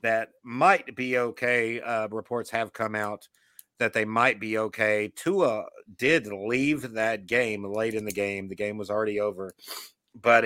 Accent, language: American, English